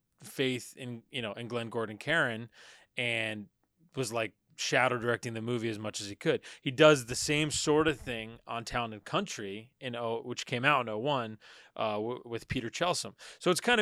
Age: 20-39